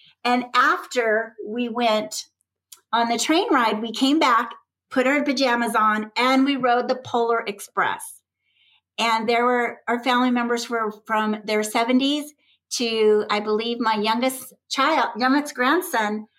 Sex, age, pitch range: female, 50-69, 220-270 Hz